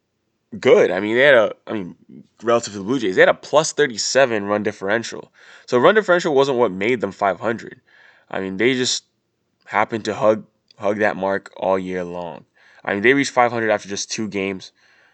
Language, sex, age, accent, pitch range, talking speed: English, male, 20-39, American, 95-110 Hz, 200 wpm